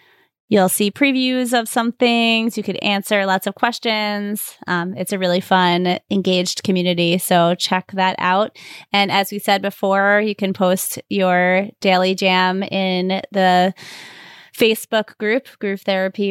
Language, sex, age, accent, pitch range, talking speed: English, female, 20-39, American, 185-220 Hz, 145 wpm